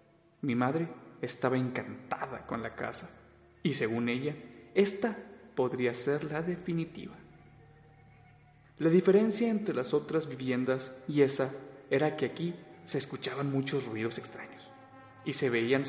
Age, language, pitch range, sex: 40-59, Spanish, 125-170 Hz, male